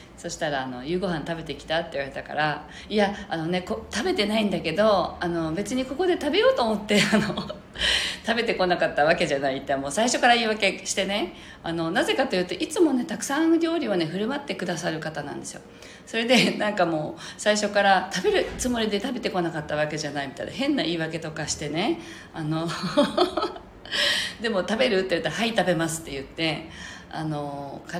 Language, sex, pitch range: Japanese, female, 155-210 Hz